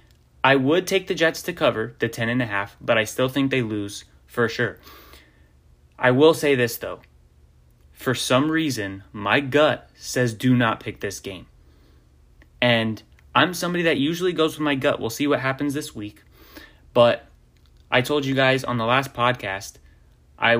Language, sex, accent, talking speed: English, male, American, 170 wpm